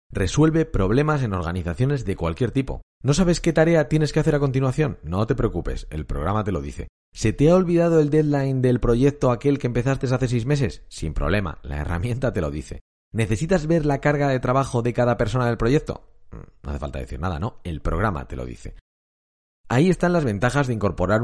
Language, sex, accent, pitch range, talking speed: Spanish, male, Spanish, 90-130 Hz, 205 wpm